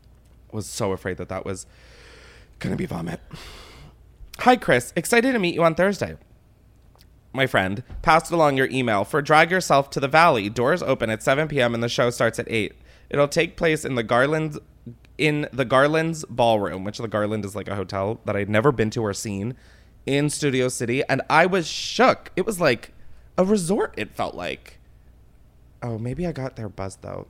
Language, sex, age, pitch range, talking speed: English, male, 20-39, 110-160 Hz, 190 wpm